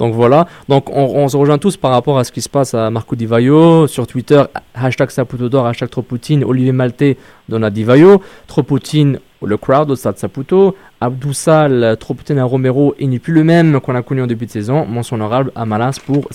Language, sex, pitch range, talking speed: French, male, 115-150 Hz, 210 wpm